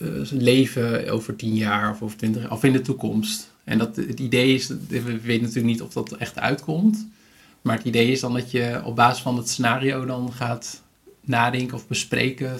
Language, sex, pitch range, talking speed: Dutch, male, 120-135 Hz, 185 wpm